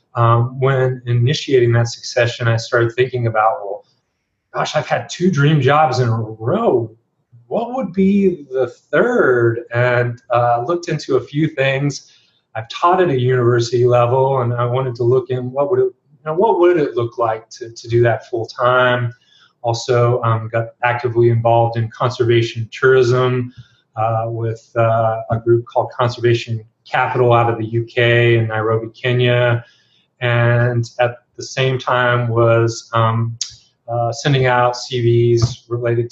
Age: 30-49